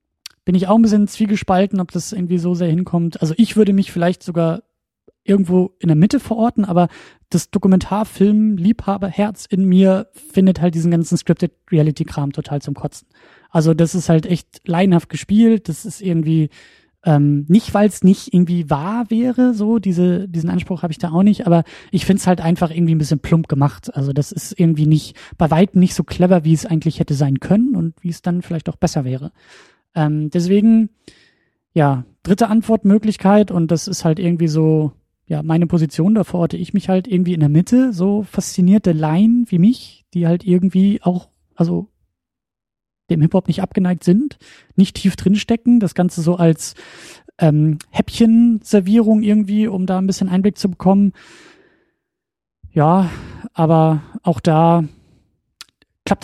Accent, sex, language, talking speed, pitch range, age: German, male, German, 170 wpm, 165-205 Hz, 20-39